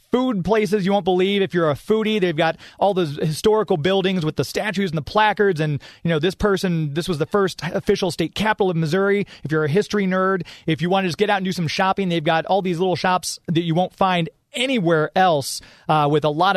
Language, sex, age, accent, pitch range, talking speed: English, male, 30-49, American, 160-190 Hz, 245 wpm